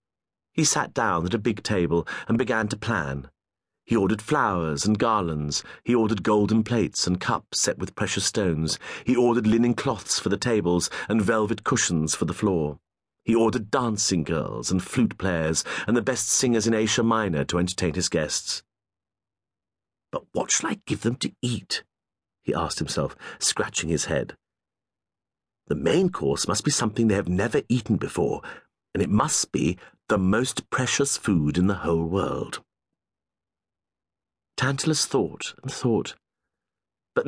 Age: 40-59